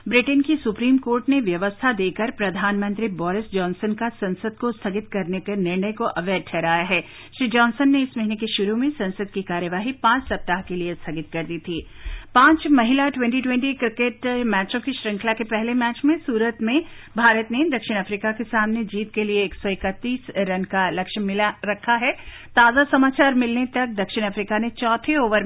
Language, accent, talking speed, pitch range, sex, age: Hindi, native, 180 wpm, 190-245 Hz, female, 50-69